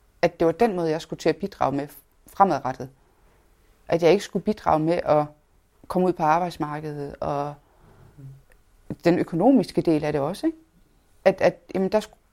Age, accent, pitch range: 30-49, native, 130-195 Hz